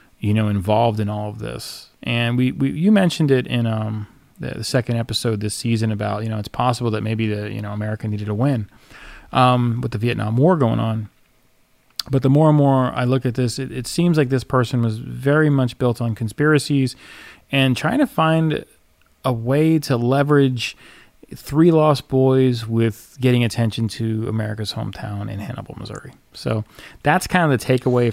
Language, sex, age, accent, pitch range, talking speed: English, male, 30-49, American, 110-130 Hz, 190 wpm